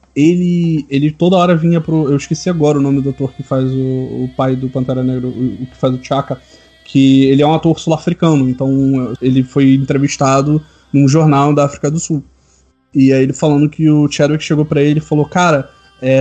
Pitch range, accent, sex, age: 135-155 Hz, Brazilian, male, 20-39